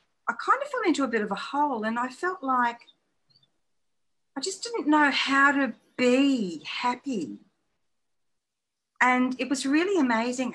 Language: English